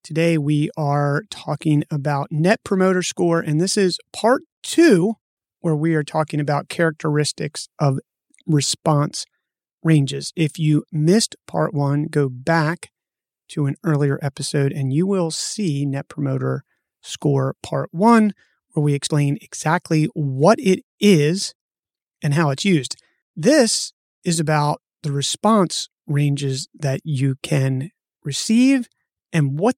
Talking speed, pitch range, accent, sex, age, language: 130 wpm, 145-190 Hz, American, male, 30-49, English